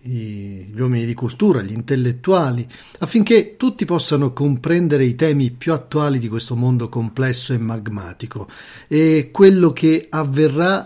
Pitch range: 125-160 Hz